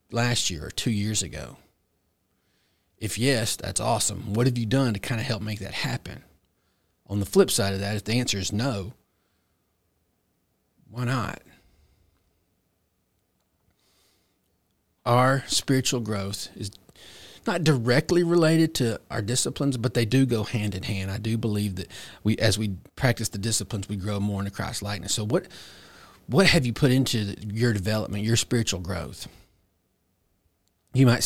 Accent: American